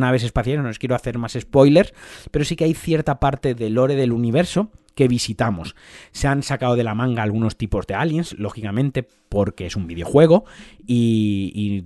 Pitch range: 105-150 Hz